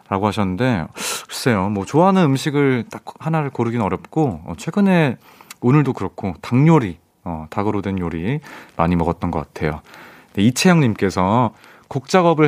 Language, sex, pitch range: Korean, male, 90-135 Hz